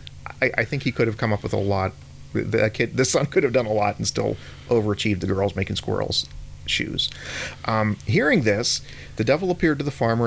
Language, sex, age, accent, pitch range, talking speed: English, male, 40-59, American, 75-125 Hz, 220 wpm